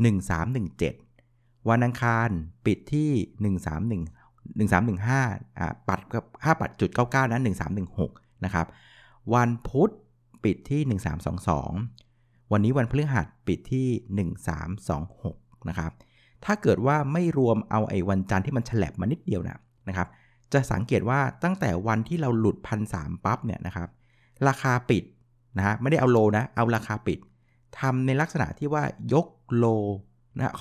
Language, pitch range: Thai, 95-130 Hz